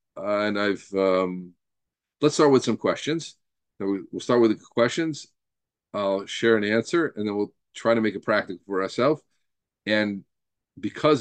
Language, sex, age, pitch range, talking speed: English, male, 40-59, 95-115 Hz, 165 wpm